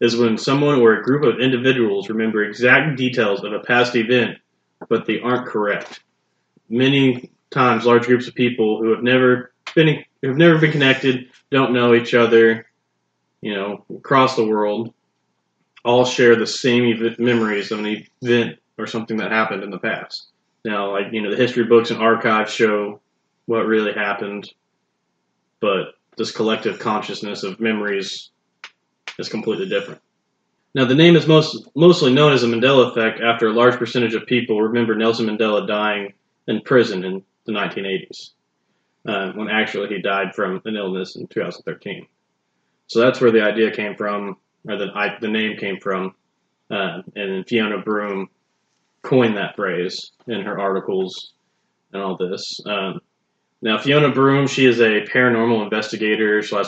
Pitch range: 105-125 Hz